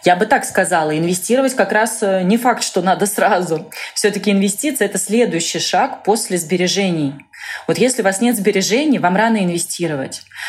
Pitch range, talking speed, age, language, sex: 175-220 Hz, 165 wpm, 20-39, Russian, female